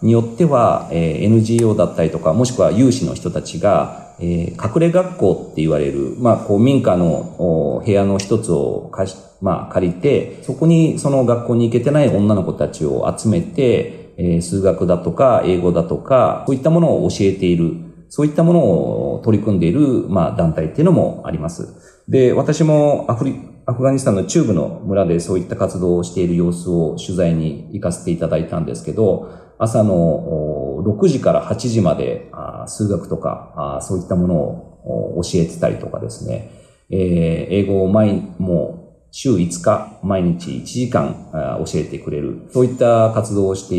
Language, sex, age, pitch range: Japanese, male, 40-59, 90-135 Hz